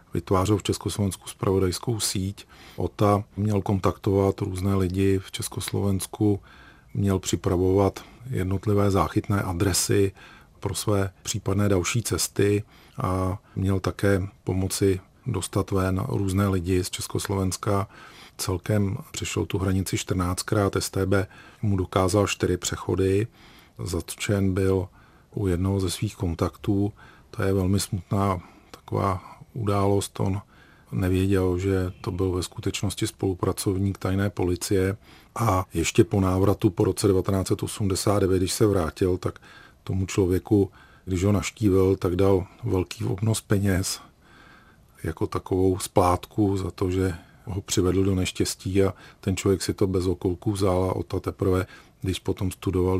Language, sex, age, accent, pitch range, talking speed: Czech, male, 40-59, native, 95-105 Hz, 125 wpm